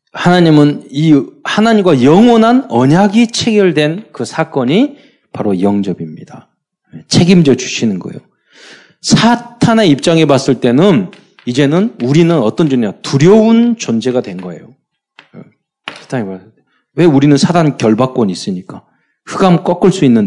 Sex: male